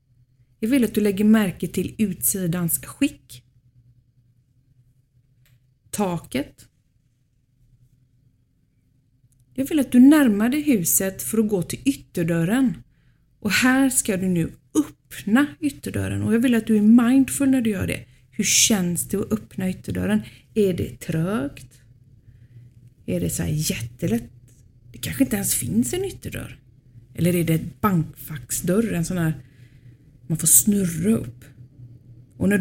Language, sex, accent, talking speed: Swedish, female, native, 140 wpm